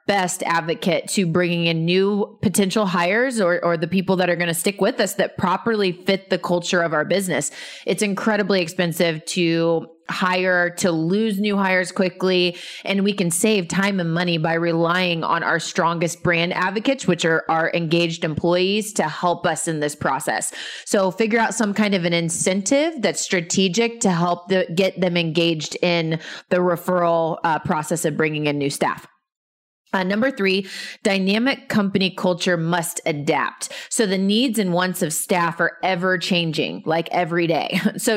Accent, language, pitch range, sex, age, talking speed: American, English, 170-200 Hz, female, 20-39, 170 wpm